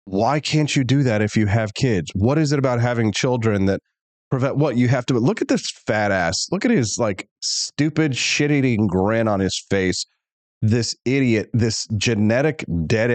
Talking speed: 190 wpm